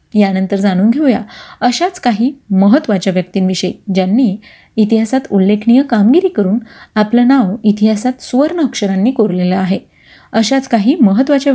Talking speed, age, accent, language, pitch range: 115 wpm, 30-49, native, Marathi, 200-250 Hz